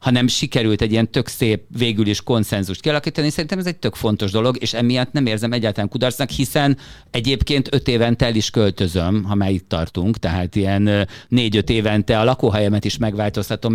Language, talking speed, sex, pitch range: Hungarian, 180 wpm, male, 105-125 Hz